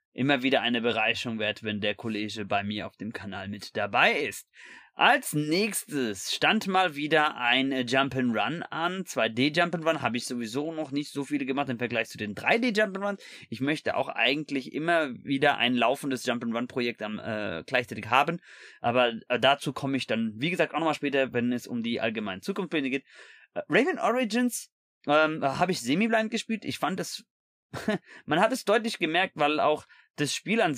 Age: 30-49